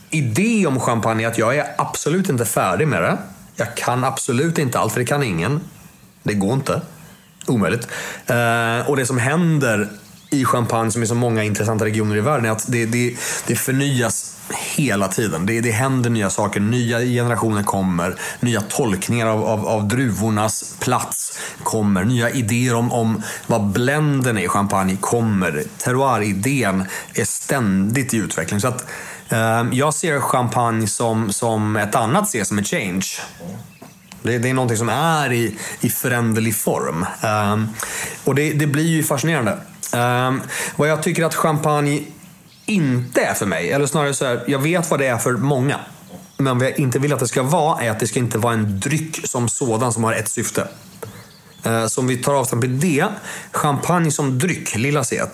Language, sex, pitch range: Swedish, male, 110-150 Hz